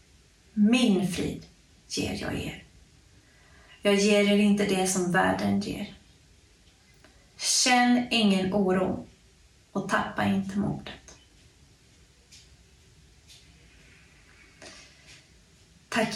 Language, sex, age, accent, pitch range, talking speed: Swedish, female, 30-49, native, 195-215 Hz, 80 wpm